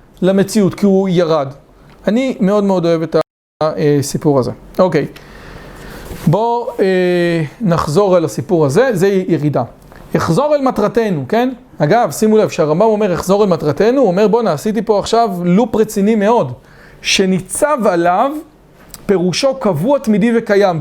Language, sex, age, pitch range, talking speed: English, male, 40-59, 175-235 Hz, 105 wpm